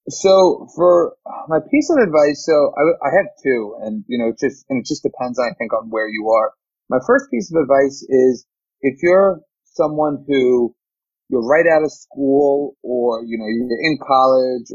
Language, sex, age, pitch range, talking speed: English, male, 30-49, 125-160 Hz, 190 wpm